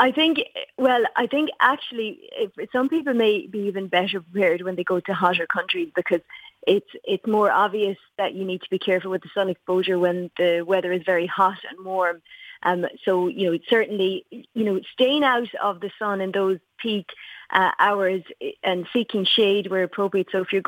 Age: 30-49